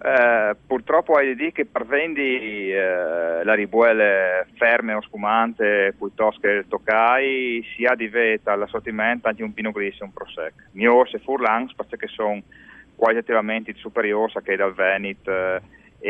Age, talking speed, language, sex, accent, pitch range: 40-59, 155 wpm, Italian, male, native, 100-115 Hz